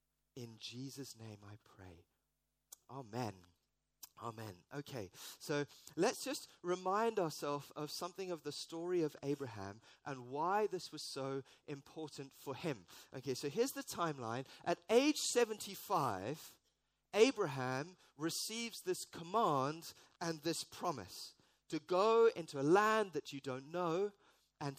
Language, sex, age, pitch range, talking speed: English, male, 30-49, 140-190 Hz, 130 wpm